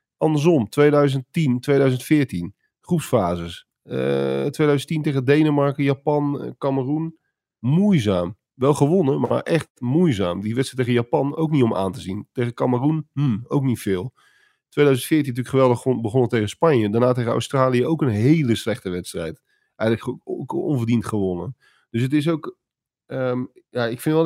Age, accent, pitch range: 40-59, Dutch, 105-140 Hz